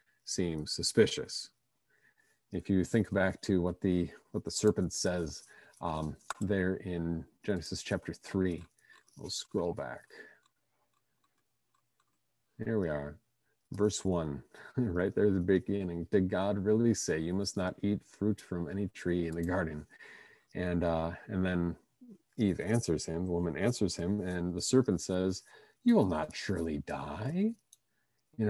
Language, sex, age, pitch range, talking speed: English, male, 40-59, 85-115 Hz, 145 wpm